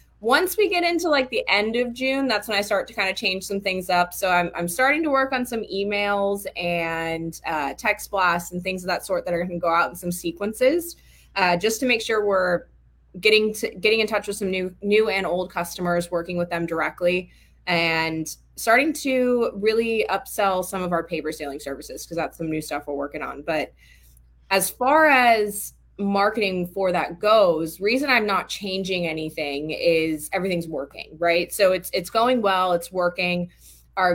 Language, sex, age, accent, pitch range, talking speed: English, female, 20-39, American, 170-215 Hz, 200 wpm